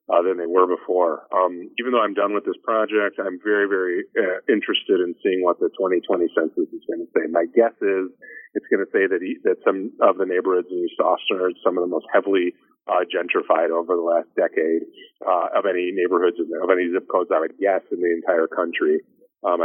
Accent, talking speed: American, 230 wpm